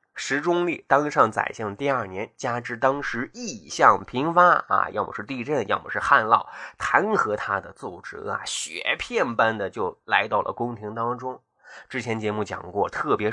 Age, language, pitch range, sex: 20-39, Chinese, 110-160 Hz, male